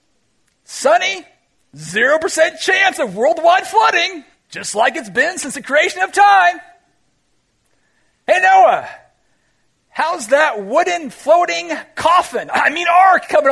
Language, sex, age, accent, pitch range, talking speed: English, male, 40-59, American, 205-340 Hz, 115 wpm